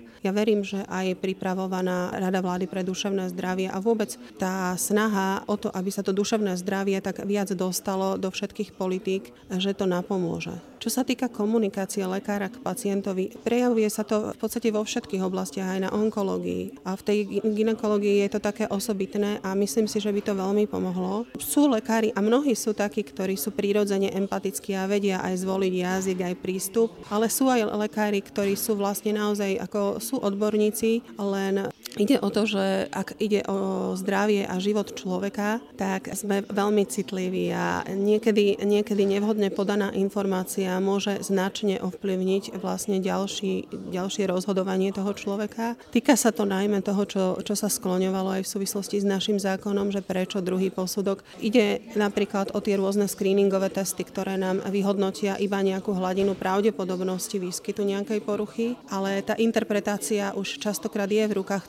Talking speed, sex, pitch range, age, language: 160 wpm, female, 190-210 Hz, 30-49, Slovak